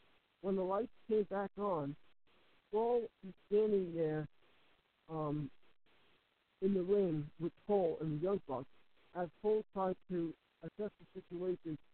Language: English